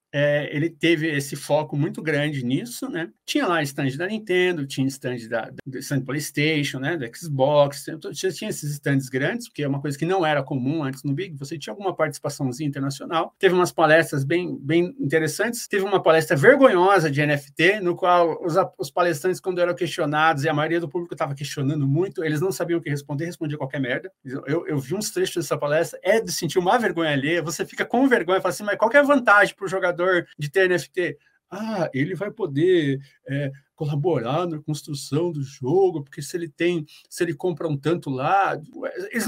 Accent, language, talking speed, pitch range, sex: Brazilian, Portuguese, 200 wpm, 150-190 Hz, male